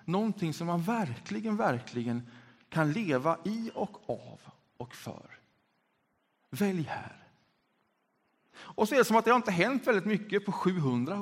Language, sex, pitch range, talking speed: Swedish, male, 140-220 Hz, 150 wpm